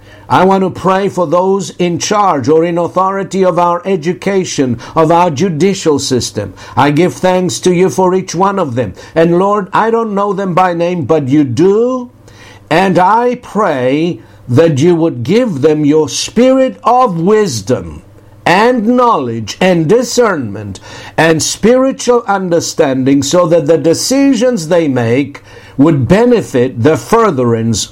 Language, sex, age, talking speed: English, male, 60-79, 145 wpm